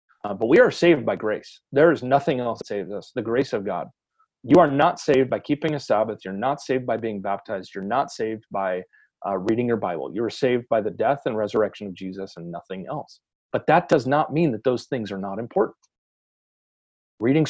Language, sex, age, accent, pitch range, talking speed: English, male, 40-59, American, 105-145 Hz, 225 wpm